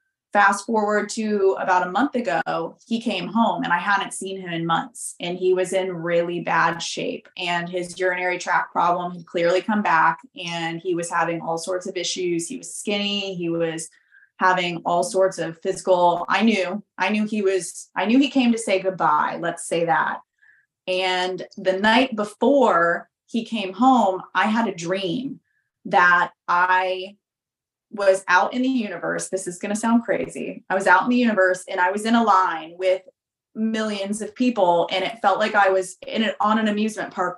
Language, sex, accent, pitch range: English, female, American, 180-220 Hz